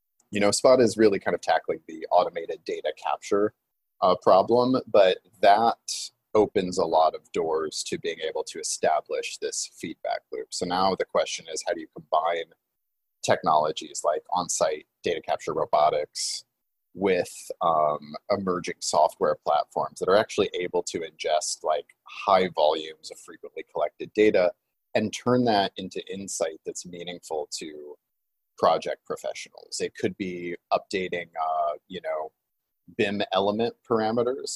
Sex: male